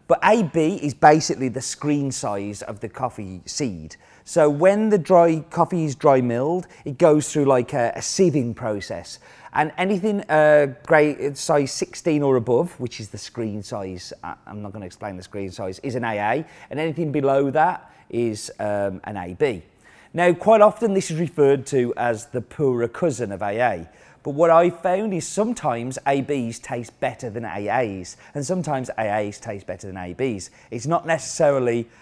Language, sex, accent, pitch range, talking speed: English, male, British, 115-160 Hz, 170 wpm